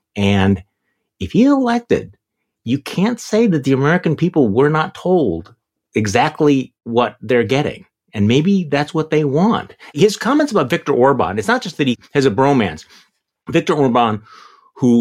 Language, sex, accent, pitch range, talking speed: English, male, American, 105-150 Hz, 160 wpm